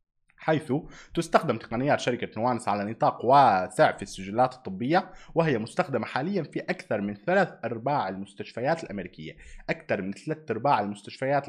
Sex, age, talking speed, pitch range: male, 20-39, 135 wpm, 95-155 Hz